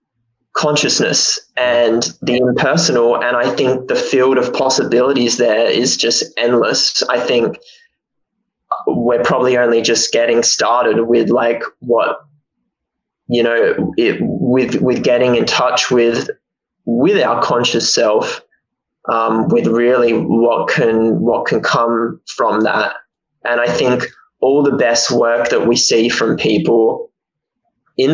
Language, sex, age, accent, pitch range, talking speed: English, male, 20-39, Australian, 120-180 Hz, 130 wpm